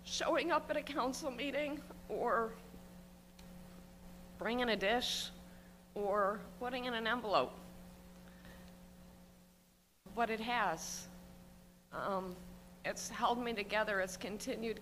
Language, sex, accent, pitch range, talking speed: English, female, American, 145-200 Hz, 100 wpm